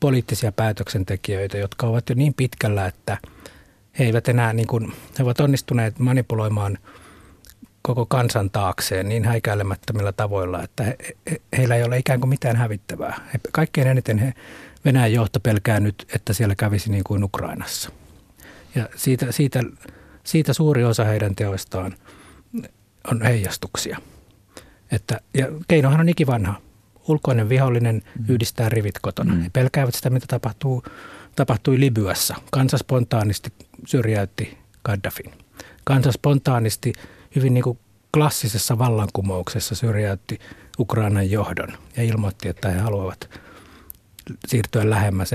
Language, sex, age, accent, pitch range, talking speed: Finnish, male, 60-79, native, 100-125 Hz, 125 wpm